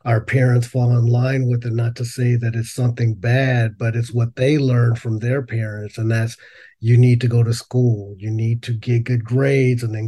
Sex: male